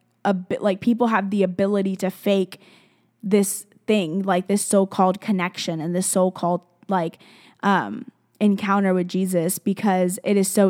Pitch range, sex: 185-210 Hz, female